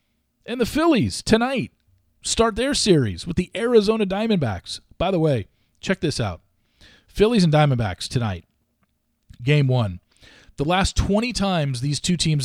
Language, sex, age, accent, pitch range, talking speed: English, male, 40-59, American, 110-160 Hz, 145 wpm